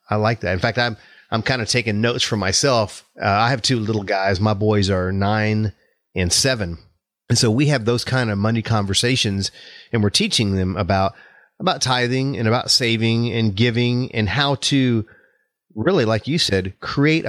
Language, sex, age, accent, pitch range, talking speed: English, male, 30-49, American, 105-135 Hz, 185 wpm